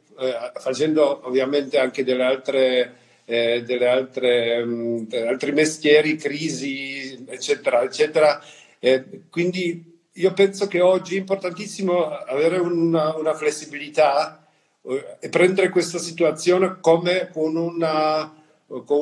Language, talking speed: Italian, 100 wpm